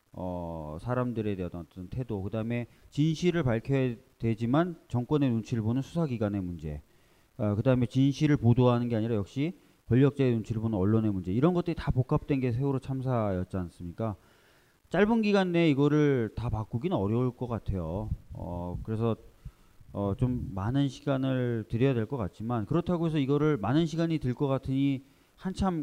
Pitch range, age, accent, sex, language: 105-140 Hz, 30-49, native, male, Korean